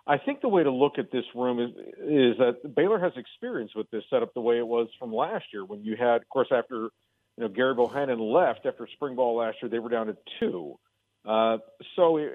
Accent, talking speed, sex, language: American, 240 wpm, male, English